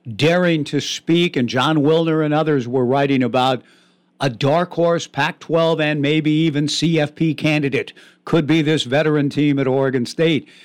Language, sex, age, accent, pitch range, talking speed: English, male, 60-79, American, 130-160 Hz, 165 wpm